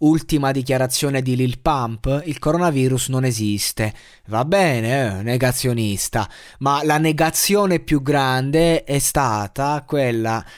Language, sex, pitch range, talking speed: Italian, male, 125-160 Hz, 120 wpm